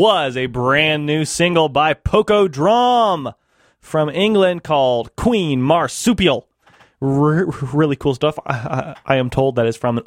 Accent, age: American, 20-39